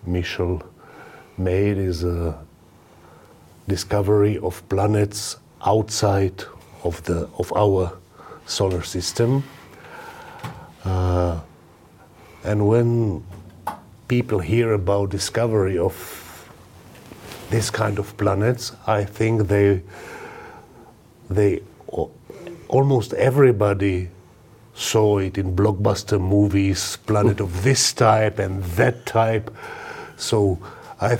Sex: male